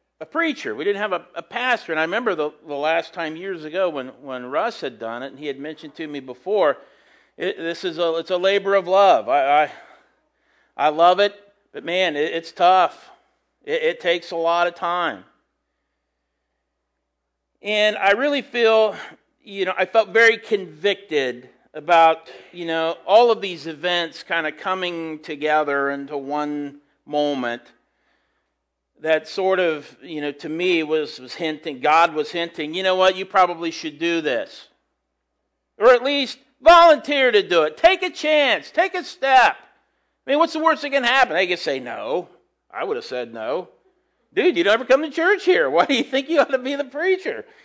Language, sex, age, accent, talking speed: English, male, 50-69, American, 190 wpm